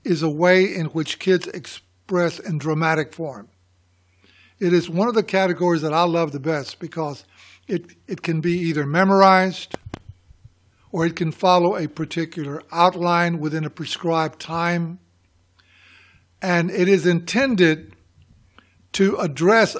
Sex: male